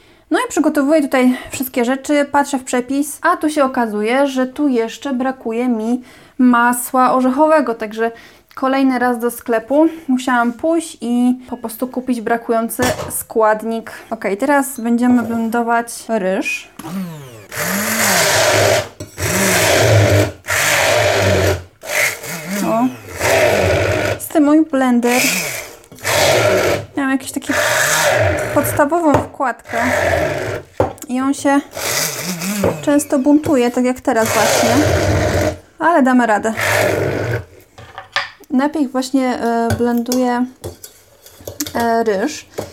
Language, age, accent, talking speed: Polish, 20-39, native, 90 wpm